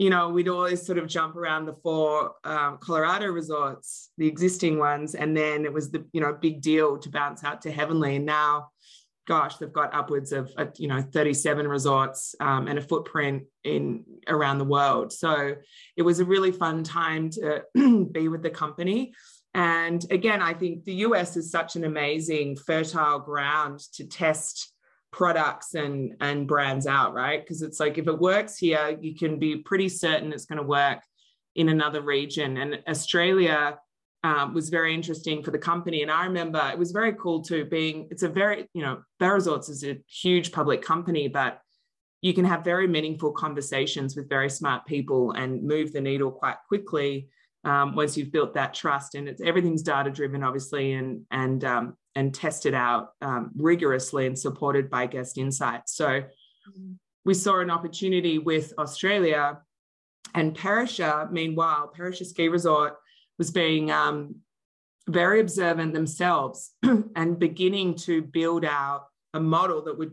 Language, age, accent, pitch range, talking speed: English, 20-39, Australian, 145-170 Hz, 170 wpm